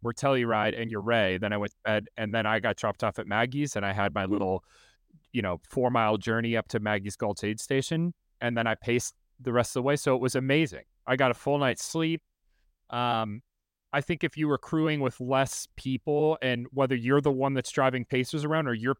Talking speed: 230 wpm